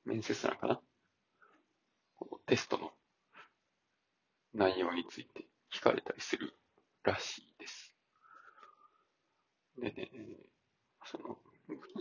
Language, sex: Japanese, male